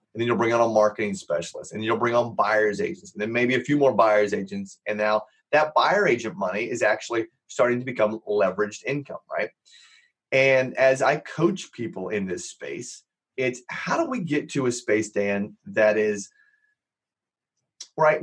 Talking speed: 185 wpm